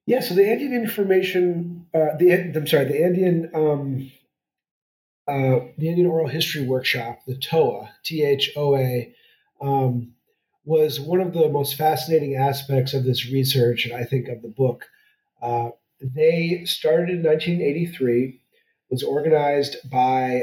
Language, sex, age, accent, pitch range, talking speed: English, male, 40-59, American, 125-160 Hz, 140 wpm